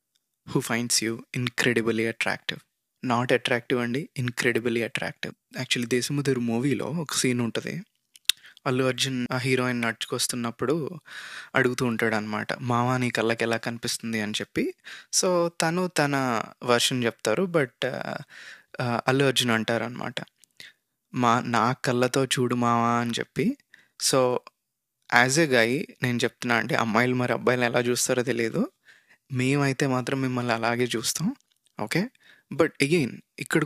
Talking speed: 190 wpm